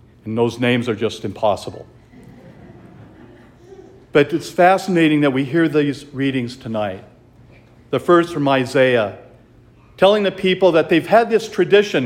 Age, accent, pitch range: 50-69, American, 125-190 Hz